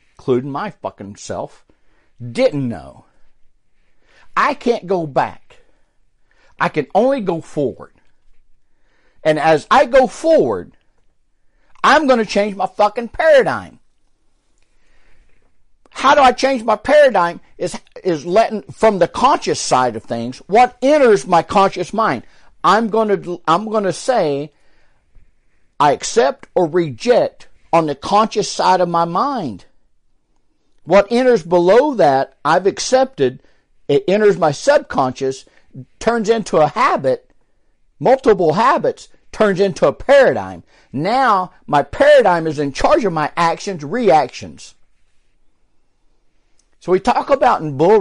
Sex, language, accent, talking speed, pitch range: male, English, American, 125 wpm, 160-255 Hz